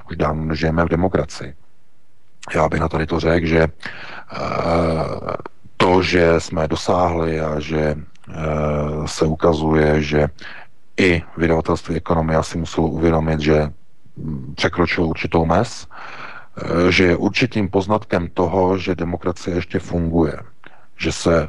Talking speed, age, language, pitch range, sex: 115 wpm, 40-59, Czech, 80-95 Hz, male